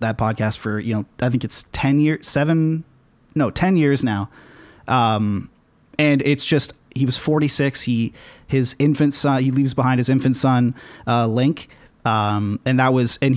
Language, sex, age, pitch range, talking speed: English, male, 30-49, 110-135 Hz, 175 wpm